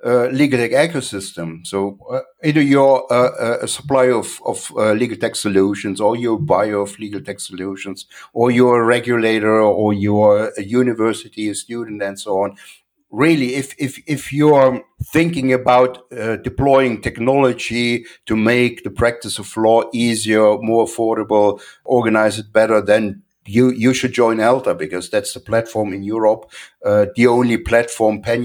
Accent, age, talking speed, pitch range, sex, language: German, 60-79, 160 wpm, 105-125 Hz, male, Turkish